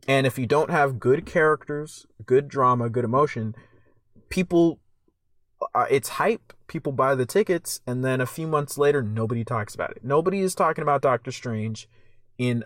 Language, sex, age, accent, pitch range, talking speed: English, male, 20-39, American, 120-160 Hz, 170 wpm